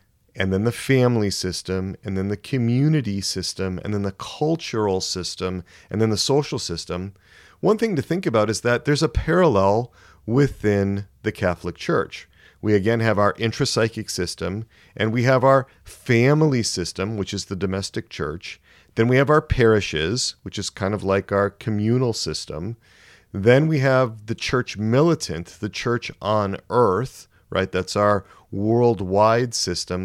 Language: English